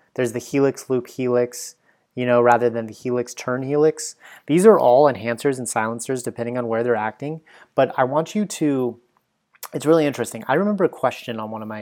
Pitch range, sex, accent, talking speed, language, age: 120-145 Hz, male, American, 195 wpm, English, 30-49